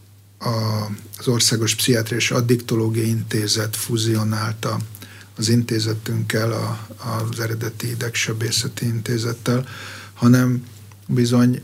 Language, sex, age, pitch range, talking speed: Hungarian, male, 50-69, 105-120 Hz, 75 wpm